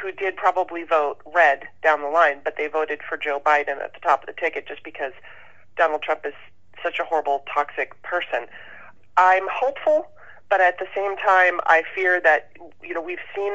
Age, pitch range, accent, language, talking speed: 30-49, 150-180 Hz, American, English, 195 wpm